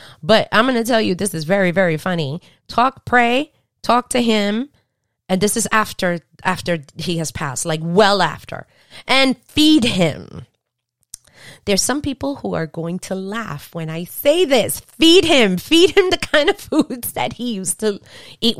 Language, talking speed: English, 175 wpm